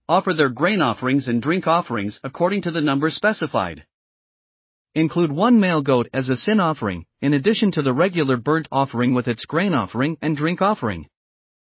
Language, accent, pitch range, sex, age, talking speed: English, American, 130-175 Hz, male, 40-59, 175 wpm